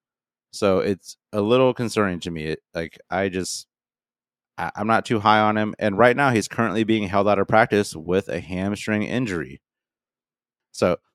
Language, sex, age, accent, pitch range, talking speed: English, male, 30-49, American, 90-110 Hz, 165 wpm